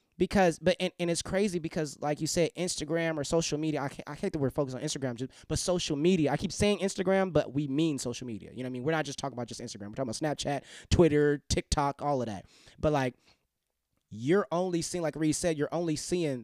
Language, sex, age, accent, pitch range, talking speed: English, male, 20-39, American, 135-170 Hz, 235 wpm